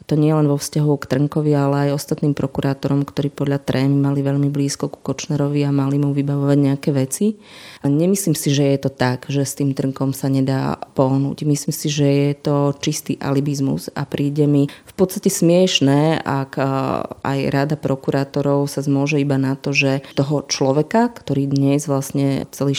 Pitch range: 135-150 Hz